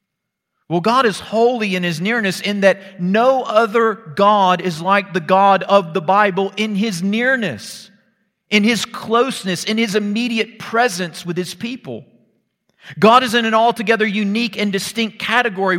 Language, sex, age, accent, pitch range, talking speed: English, male, 40-59, American, 175-210 Hz, 155 wpm